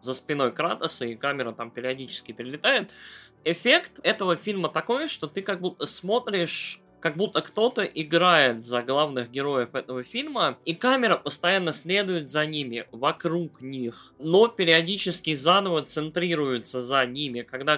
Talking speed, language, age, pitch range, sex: 140 wpm, Russian, 20-39, 140-185 Hz, male